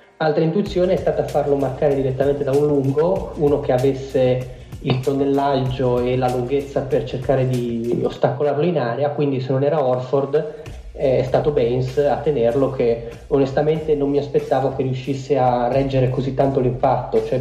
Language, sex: Italian, male